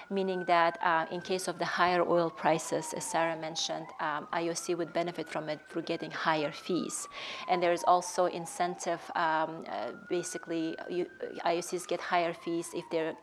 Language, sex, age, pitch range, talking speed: English, female, 30-49, 165-190 Hz, 170 wpm